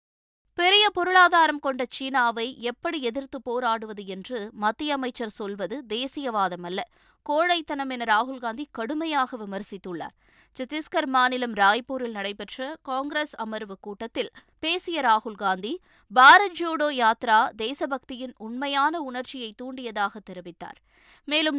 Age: 20-39